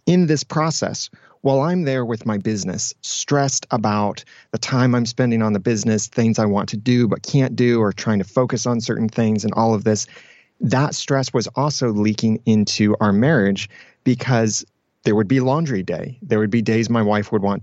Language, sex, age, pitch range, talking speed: English, male, 30-49, 105-125 Hz, 200 wpm